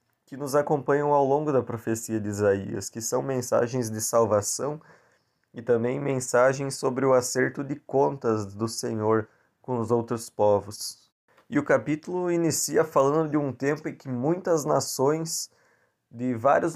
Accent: Brazilian